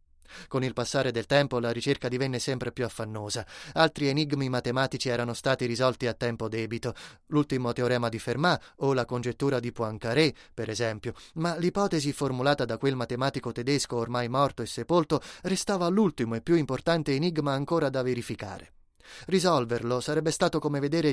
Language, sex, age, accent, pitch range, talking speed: Italian, male, 20-39, native, 120-155 Hz, 160 wpm